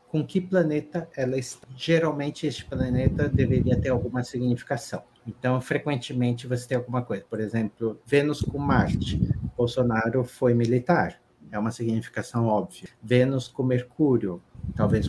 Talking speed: 135 wpm